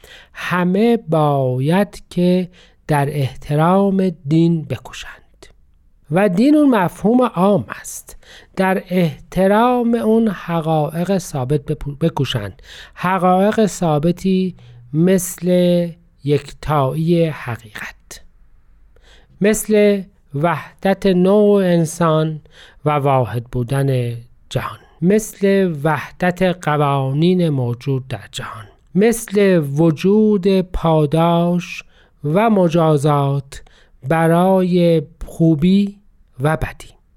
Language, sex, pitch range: Persian, male, 140-185 Hz